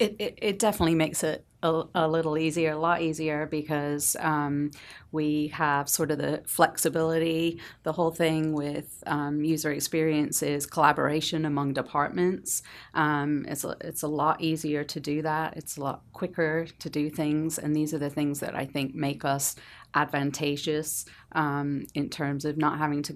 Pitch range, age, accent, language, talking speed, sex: 140-155 Hz, 40-59, American, English, 175 wpm, female